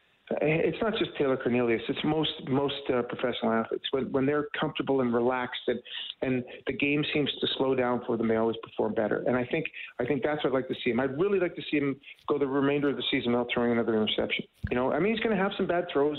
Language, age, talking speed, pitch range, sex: English, 40-59, 260 wpm, 130-150 Hz, male